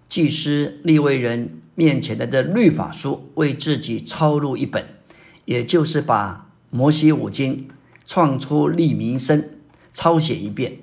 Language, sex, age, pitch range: Chinese, male, 50-69, 125-160 Hz